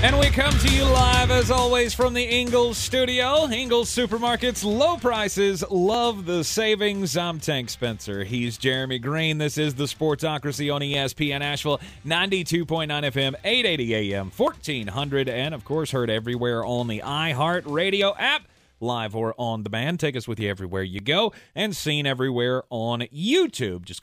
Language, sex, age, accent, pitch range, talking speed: English, male, 30-49, American, 115-170 Hz, 155 wpm